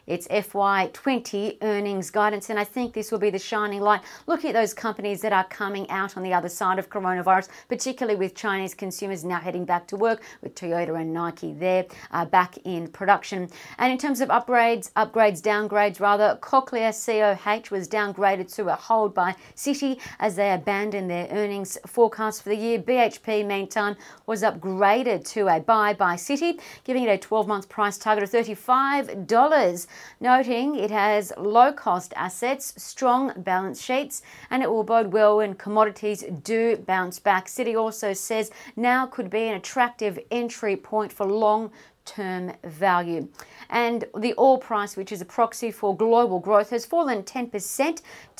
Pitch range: 190-230 Hz